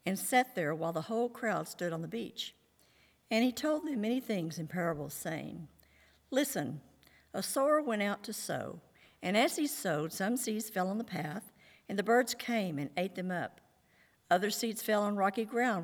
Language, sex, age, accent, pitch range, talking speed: English, female, 60-79, American, 170-230 Hz, 195 wpm